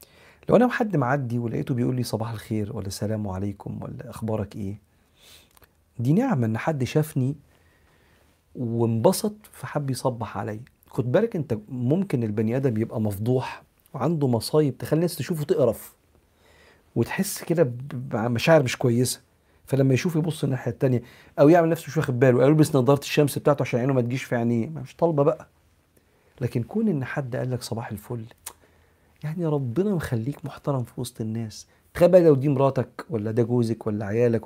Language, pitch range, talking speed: Arabic, 115-150 Hz, 155 wpm